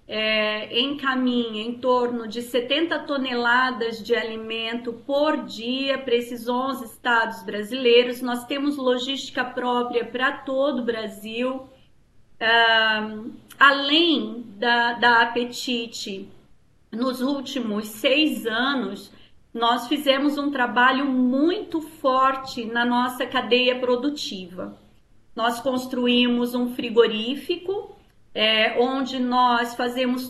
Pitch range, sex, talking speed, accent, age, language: 235-285 Hz, female, 95 wpm, Brazilian, 40-59, Portuguese